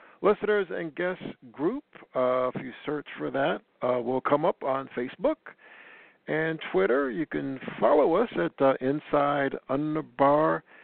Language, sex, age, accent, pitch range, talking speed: English, male, 60-79, American, 125-175 Hz, 145 wpm